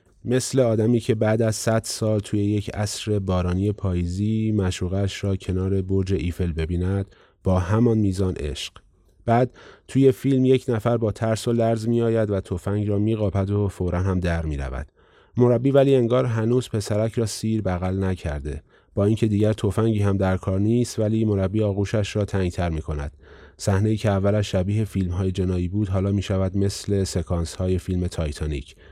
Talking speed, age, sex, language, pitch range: 160 wpm, 30-49, male, Persian, 90-110 Hz